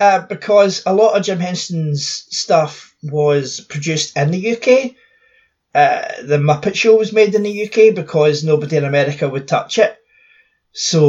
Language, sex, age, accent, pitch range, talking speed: English, male, 30-49, British, 140-205 Hz, 160 wpm